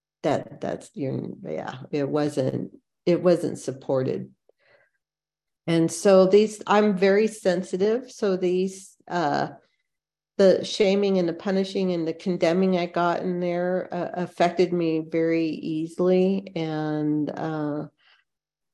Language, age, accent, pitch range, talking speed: English, 50-69, American, 155-180 Hz, 115 wpm